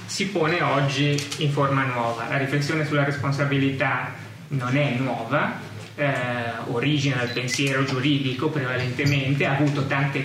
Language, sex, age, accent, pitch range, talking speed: Italian, male, 20-39, native, 130-150 Hz, 130 wpm